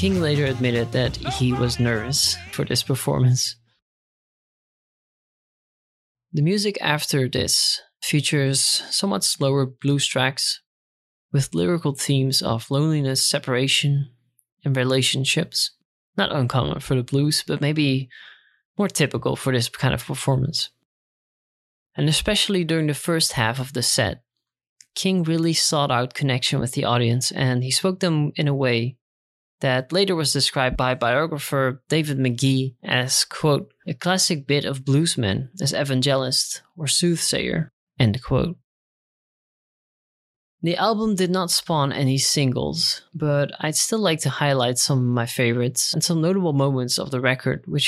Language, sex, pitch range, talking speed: English, male, 125-155 Hz, 140 wpm